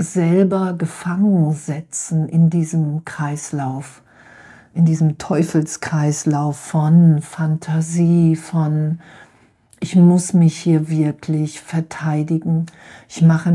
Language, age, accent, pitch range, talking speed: German, 50-69, German, 155-185 Hz, 90 wpm